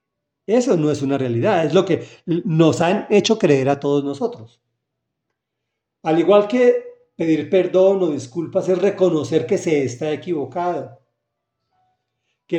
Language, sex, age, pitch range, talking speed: Spanish, male, 40-59, 125-175 Hz, 140 wpm